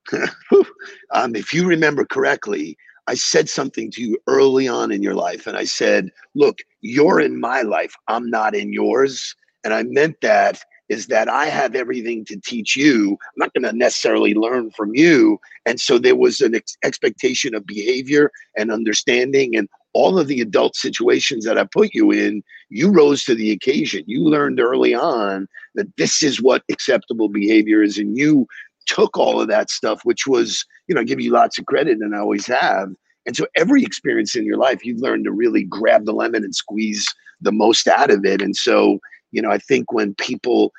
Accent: American